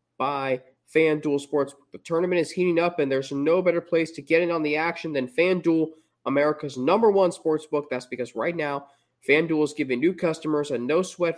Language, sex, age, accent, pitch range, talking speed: English, male, 20-39, American, 140-170 Hz, 190 wpm